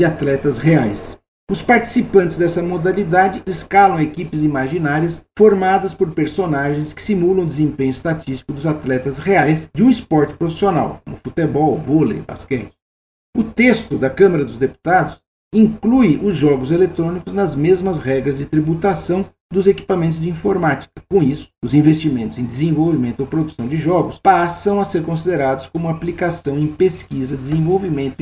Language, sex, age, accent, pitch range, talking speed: Portuguese, male, 50-69, Brazilian, 135-185 Hz, 140 wpm